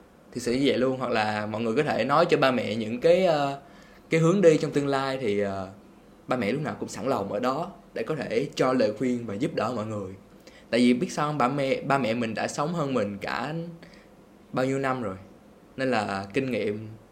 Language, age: Vietnamese, 20-39